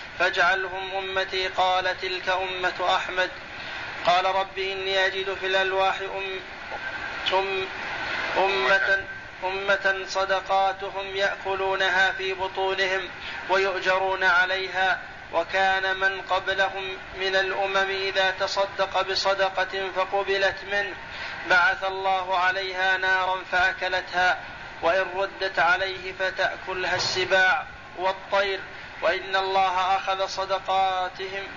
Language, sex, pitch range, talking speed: Arabic, male, 190-195 Hz, 85 wpm